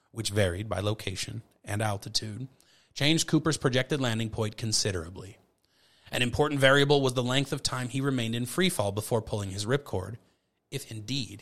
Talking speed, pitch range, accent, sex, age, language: 165 wpm, 100-130 Hz, American, male, 30-49, English